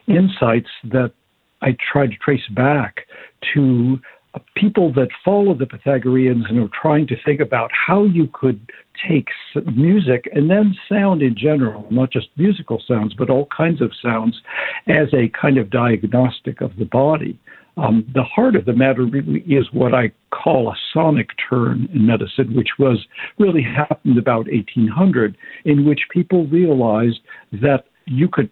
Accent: American